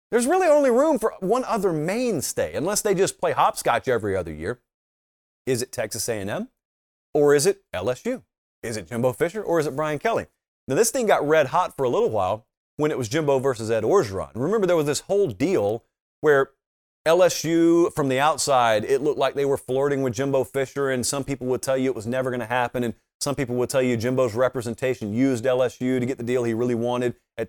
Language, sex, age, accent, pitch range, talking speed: English, male, 30-49, American, 125-160 Hz, 215 wpm